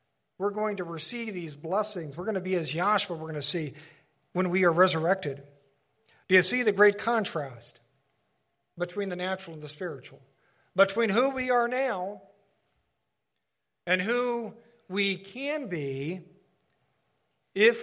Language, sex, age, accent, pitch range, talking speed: English, male, 50-69, American, 145-200 Hz, 145 wpm